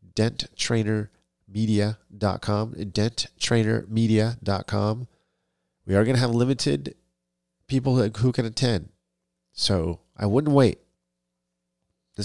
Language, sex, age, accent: English, male, 40-59, American